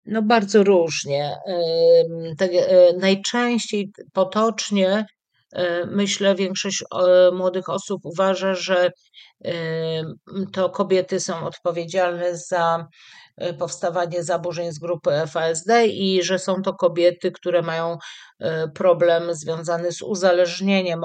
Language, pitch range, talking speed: Polish, 170-190 Hz, 90 wpm